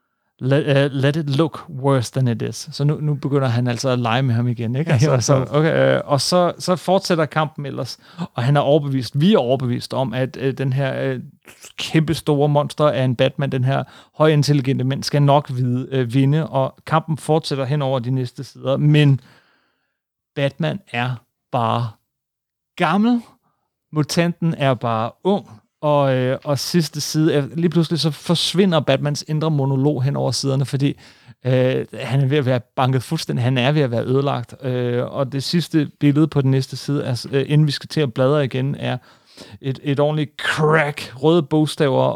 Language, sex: Danish, male